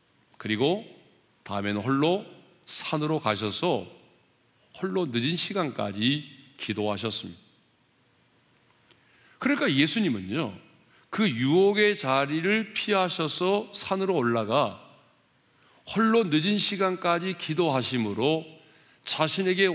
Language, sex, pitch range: Korean, male, 110-180 Hz